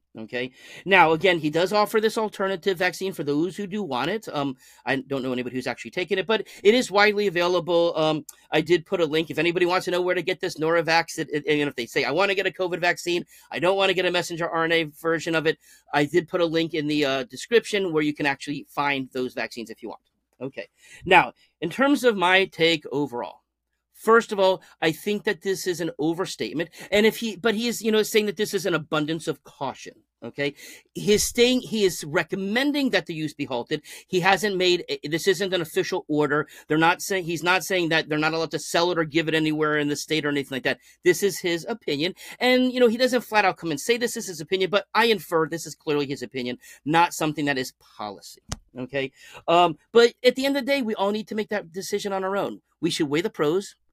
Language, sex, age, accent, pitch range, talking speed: English, male, 40-59, American, 155-200 Hz, 245 wpm